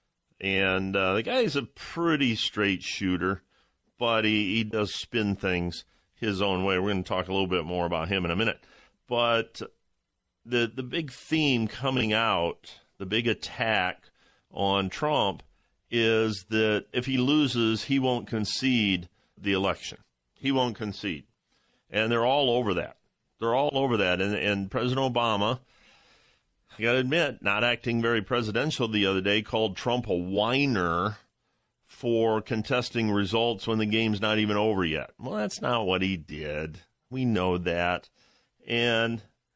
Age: 50-69